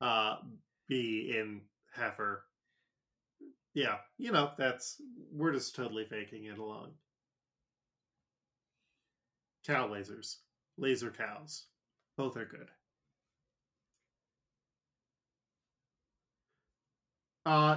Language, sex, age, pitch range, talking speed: English, male, 20-39, 115-145 Hz, 75 wpm